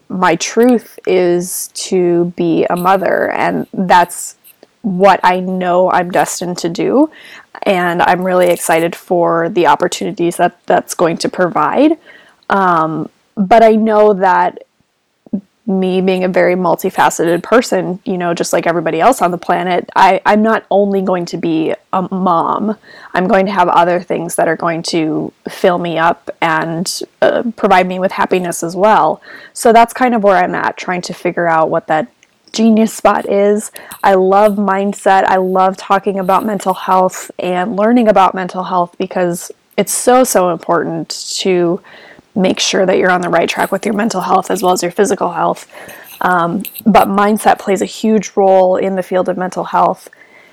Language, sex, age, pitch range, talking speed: English, female, 20-39, 175-210 Hz, 170 wpm